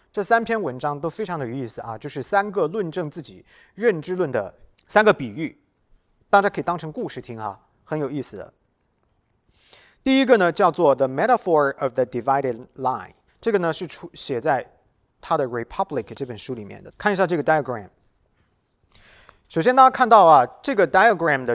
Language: English